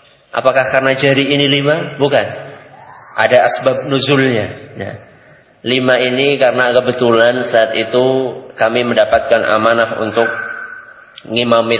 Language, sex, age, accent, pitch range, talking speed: Indonesian, male, 30-49, native, 115-150 Hz, 105 wpm